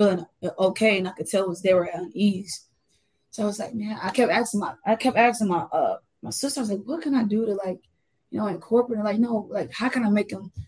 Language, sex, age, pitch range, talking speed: English, female, 20-39, 185-210 Hz, 265 wpm